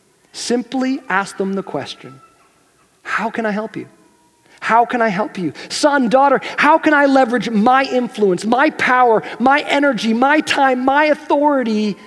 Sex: male